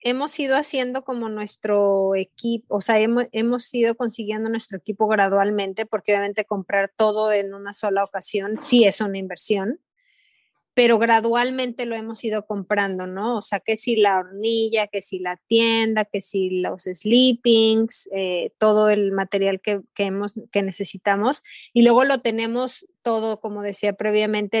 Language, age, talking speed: Spanish, 30-49, 160 wpm